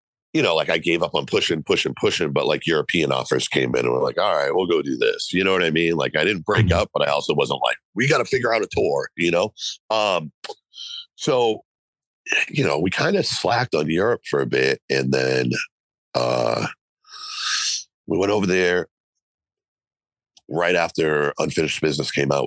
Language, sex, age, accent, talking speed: English, male, 50-69, American, 200 wpm